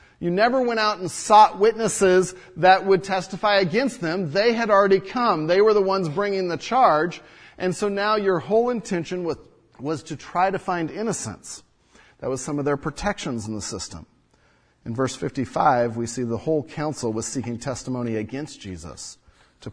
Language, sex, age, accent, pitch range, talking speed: English, male, 40-59, American, 145-205 Hz, 180 wpm